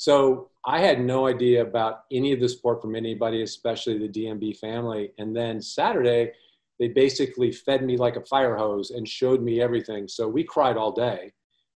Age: 40-59